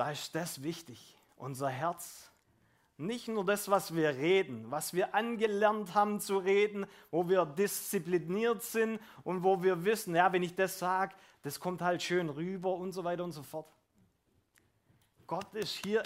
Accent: German